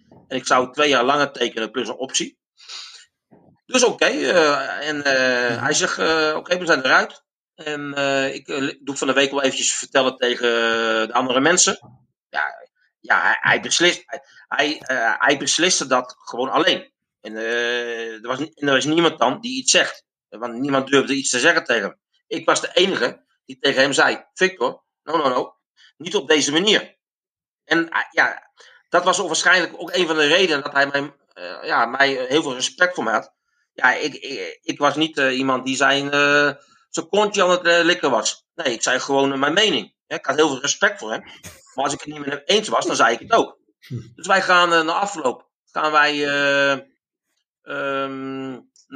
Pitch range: 130-160 Hz